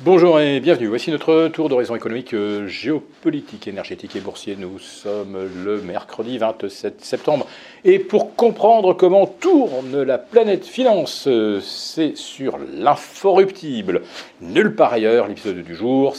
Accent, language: French, French